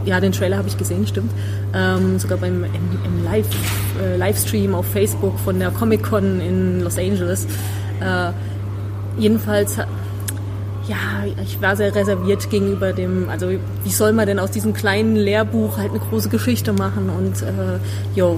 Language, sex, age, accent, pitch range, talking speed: German, female, 20-39, German, 95-105 Hz, 150 wpm